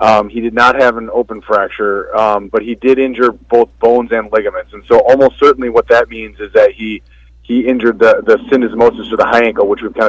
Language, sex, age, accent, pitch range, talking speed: English, male, 30-49, American, 115-155 Hz, 230 wpm